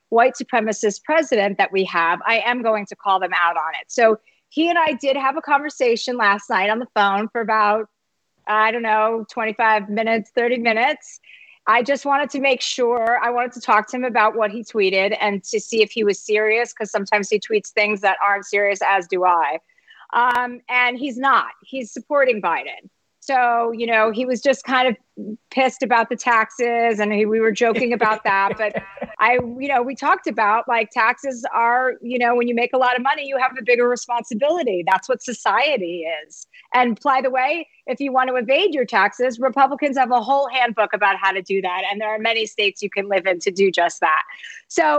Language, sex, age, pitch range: English, female, 40-59, 210-260 Hz